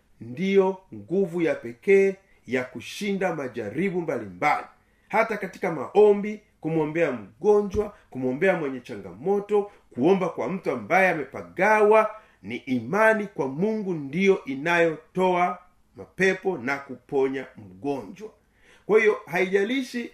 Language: Swahili